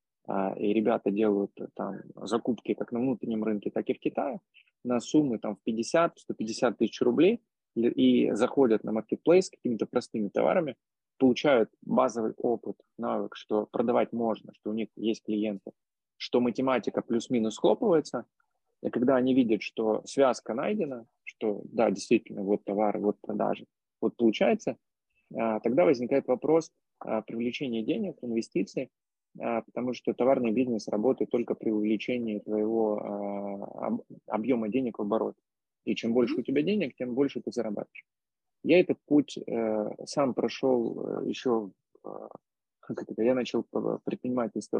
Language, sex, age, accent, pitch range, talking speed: Russian, male, 20-39, native, 105-125 Hz, 130 wpm